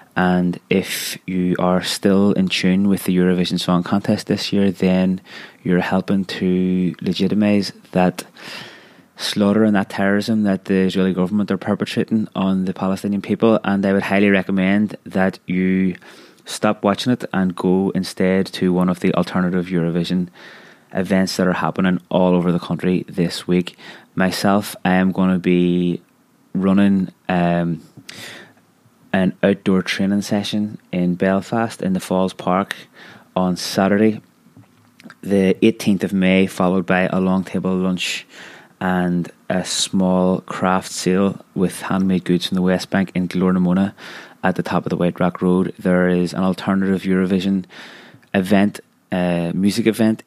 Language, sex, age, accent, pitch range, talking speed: English, male, 20-39, British, 90-100 Hz, 150 wpm